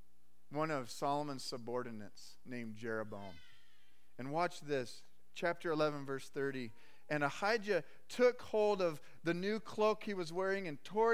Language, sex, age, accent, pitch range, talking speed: English, male, 40-59, American, 115-185 Hz, 140 wpm